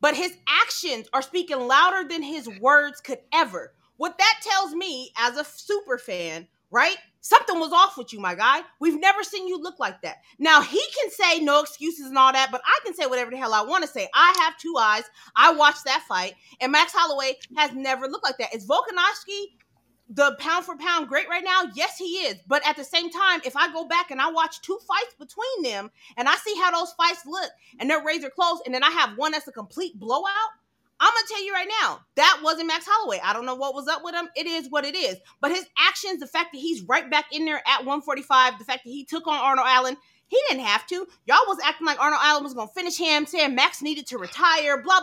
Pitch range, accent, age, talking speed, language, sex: 270-360 Hz, American, 30-49, 245 wpm, English, female